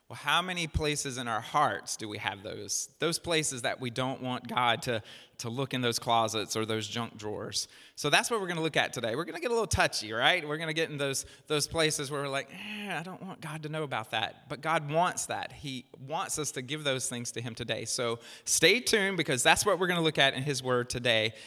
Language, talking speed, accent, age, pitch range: English, 260 wpm, American, 30-49, 120-160 Hz